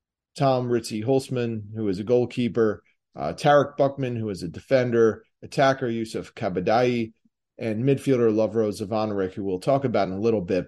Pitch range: 100-125 Hz